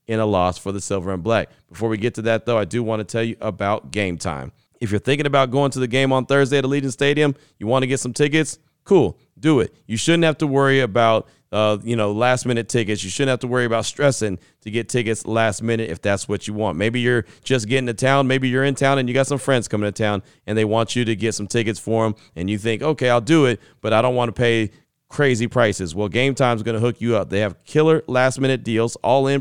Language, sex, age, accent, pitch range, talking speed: English, male, 30-49, American, 110-135 Hz, 265 wpm